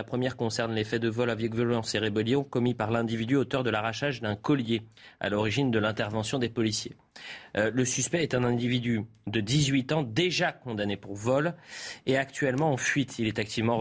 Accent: French